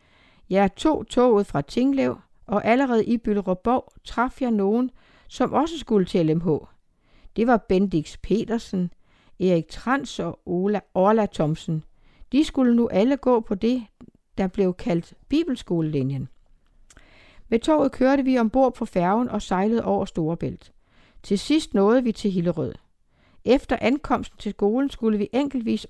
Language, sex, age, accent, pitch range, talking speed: Danish, female, 60-79, native, 185-245 Hz, 145 wpm